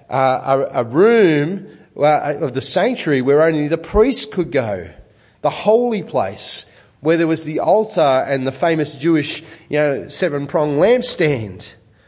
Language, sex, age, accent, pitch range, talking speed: English, male, 30-49, Australian, 135-190 Hz, 150 wpm